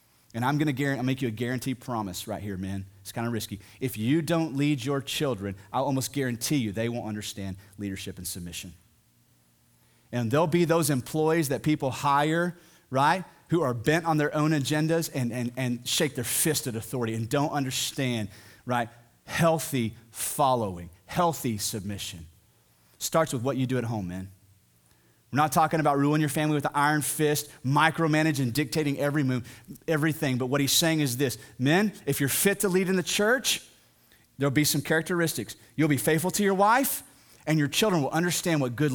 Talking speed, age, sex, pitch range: 185 wpm, 30-49, male, 110-150 Hz